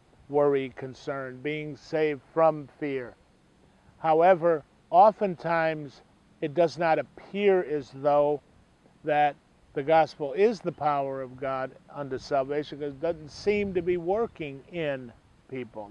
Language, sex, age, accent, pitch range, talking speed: English, male, 50-69, American, 135-165 Hz, 125 wpm